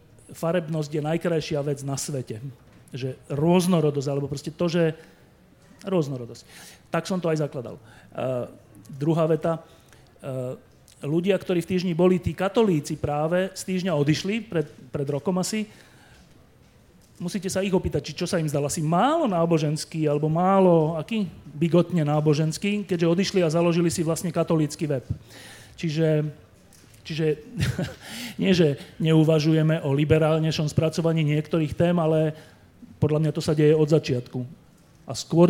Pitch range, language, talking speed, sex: 145-175 Hz, Slovak, 135 wpm, male